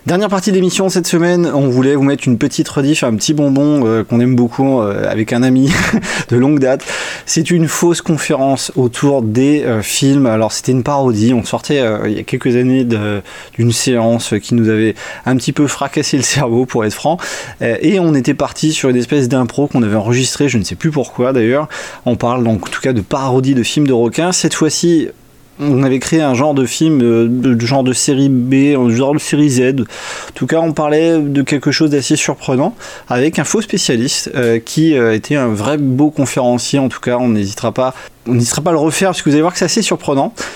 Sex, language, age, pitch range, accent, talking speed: male, French, 20-39, 120-150 Hz, French, 230 wpm